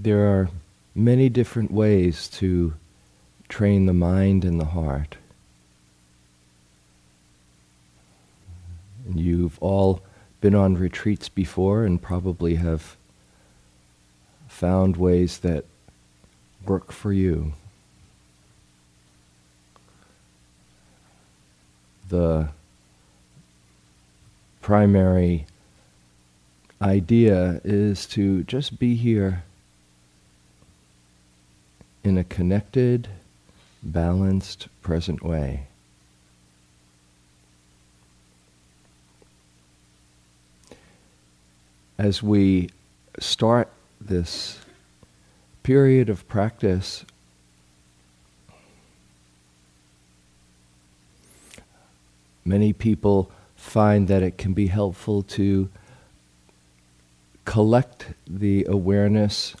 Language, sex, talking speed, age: English, male, 60 wpm, 40-59